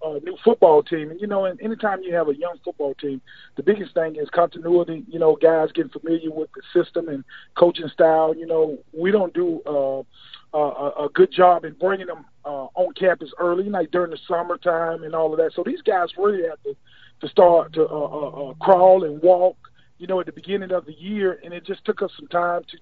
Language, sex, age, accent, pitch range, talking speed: English, male, 40-59, American, 160-200 Hz, 230 wpm